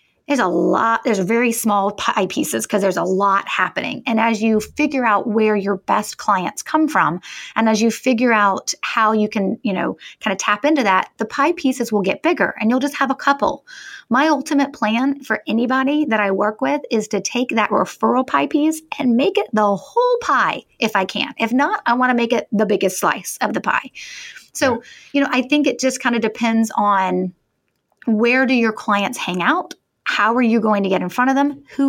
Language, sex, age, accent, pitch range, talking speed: English, female, 30-49, American, 210-270 Hz, 220 wpm